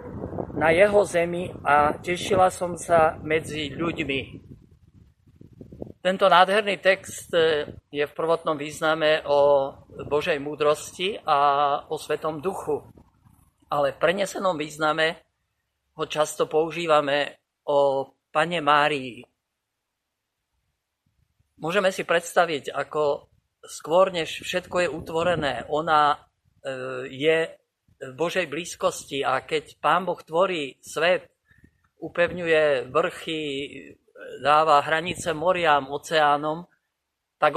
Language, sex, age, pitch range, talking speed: Slovak, male, 50-69, 145-175 Hz, 95 wpm